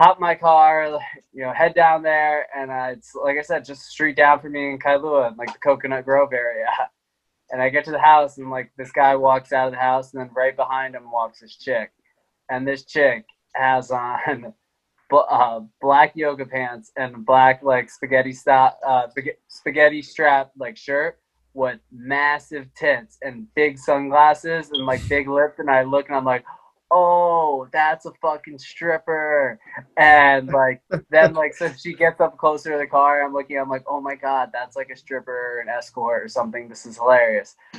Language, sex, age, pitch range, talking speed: English, male, 20-39, 130-155 Hz, 195 wpm